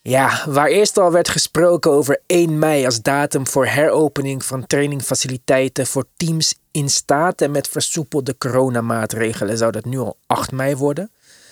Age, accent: 20-39, Dutch